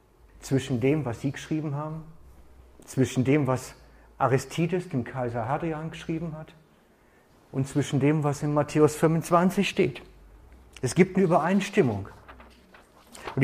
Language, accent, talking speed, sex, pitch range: German, German, 125 wpm, male, 110-165 Hz